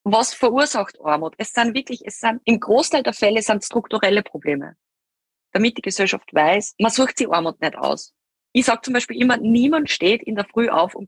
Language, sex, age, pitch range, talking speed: German, female, 20-39, 185-245 Hz, 200 wpm